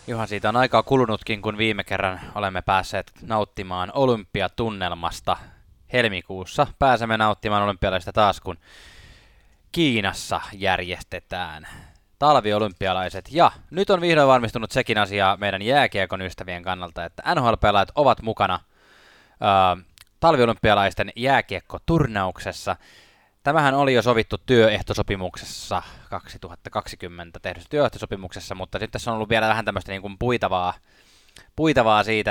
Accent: native